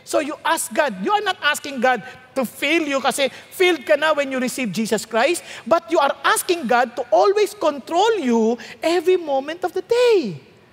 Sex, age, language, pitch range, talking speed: male, 50-69, English, 255-390 Hz, 195 wpm